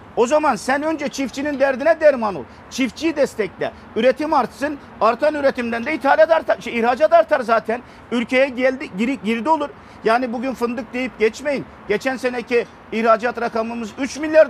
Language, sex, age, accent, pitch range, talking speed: Turkish, male, 50-69, native, 215-265 Hz, 150 wpm